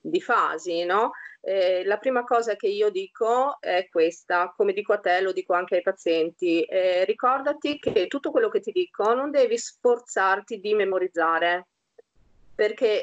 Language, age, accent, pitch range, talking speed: Italian, 30-49, native, 175-265 Hz, 160 wpm